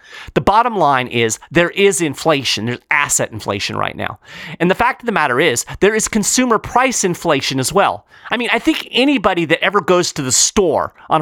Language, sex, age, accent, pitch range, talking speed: English, male, 40-59, American, 130-195 Hz, 205 wpm